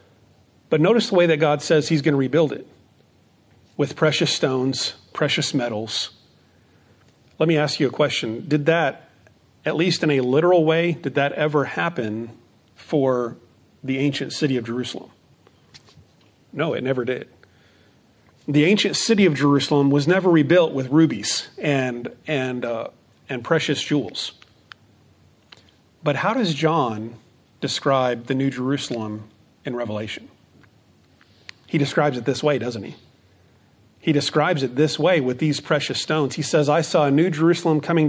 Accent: American